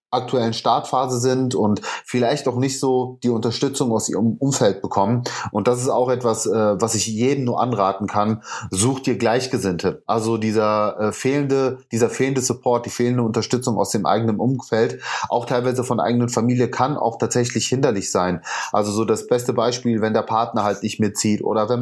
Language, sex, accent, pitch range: German, male, German, 110-125 Hz